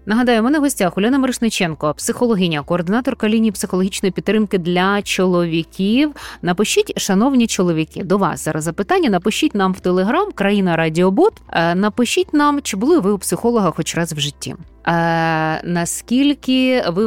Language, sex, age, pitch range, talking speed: Ukrainian, female, 20-39, 170-235 Hz, 135 wpm